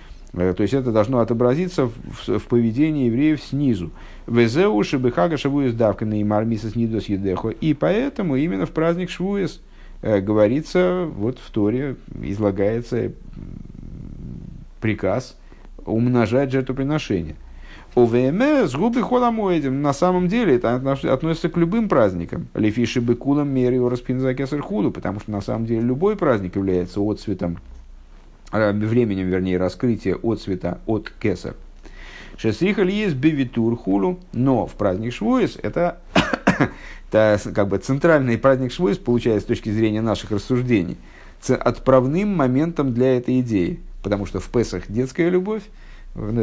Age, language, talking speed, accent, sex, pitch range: 50-69, Russian, 125 wpm, native, male, 100-135 Hz